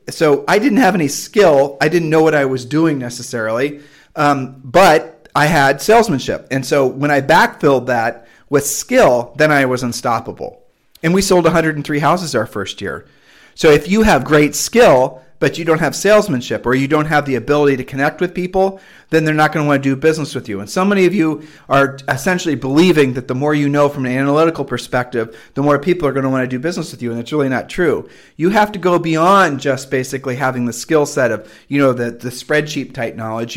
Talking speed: 220 wpm